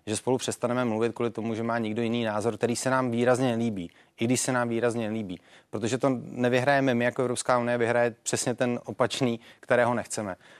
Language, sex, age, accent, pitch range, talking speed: Czech, male, 30-49, native, 115-130 Hz, 200 wpm